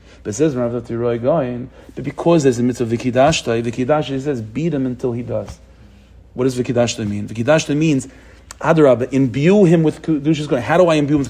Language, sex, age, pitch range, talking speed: English, male, 40-59, 130-180 Hz, 185 wpm